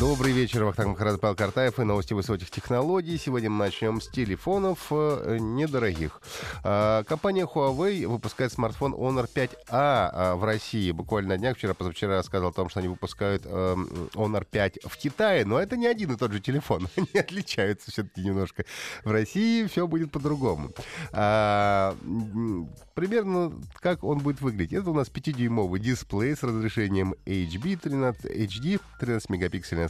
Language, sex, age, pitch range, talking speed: Russian, male, 30-49, 95-140 Hz, 135 wpm